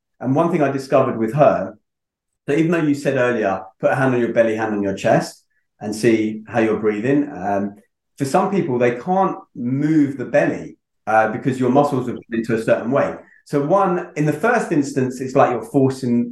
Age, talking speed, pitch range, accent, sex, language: 30-49, 205 wpm, 110-140 Hz, British, male, English